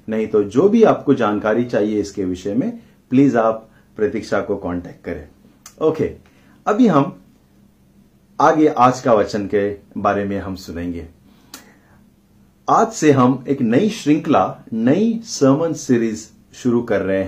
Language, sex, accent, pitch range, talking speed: Hindi, male, native, 105-150 Hz, 140 wpm